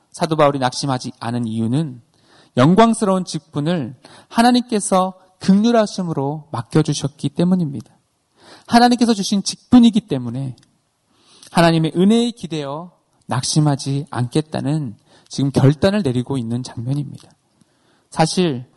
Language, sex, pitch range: Korean, male, 125-185 Hz